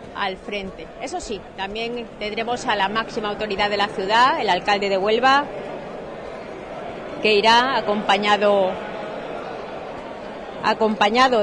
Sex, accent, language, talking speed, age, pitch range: female, Spanish, Spanish, 110 wpm, 30-49, 200-245 Hz